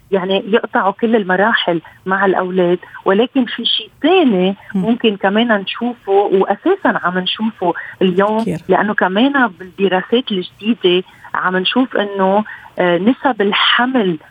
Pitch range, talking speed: 180-225 Hz, 110 wpm